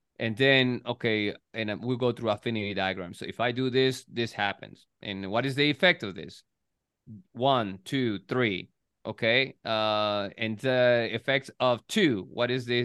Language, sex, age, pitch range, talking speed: English, male, 30-49, 115-145 Hz, 170 wpm